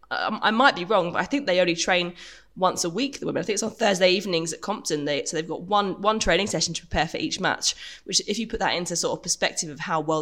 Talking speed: 280 wpm